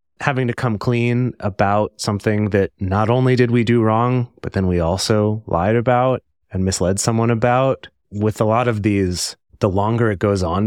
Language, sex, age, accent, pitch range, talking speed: English, male, 30-49, American, 95-120 Hz, 185 wpm